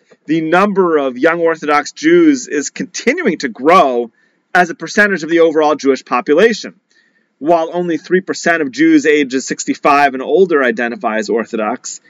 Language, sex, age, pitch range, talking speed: English, male, 30-49, 145-220 Hz, 150 wpm